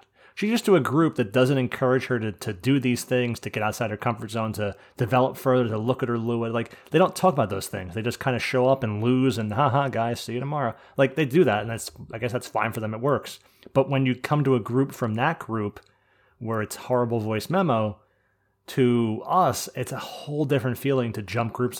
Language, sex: English, male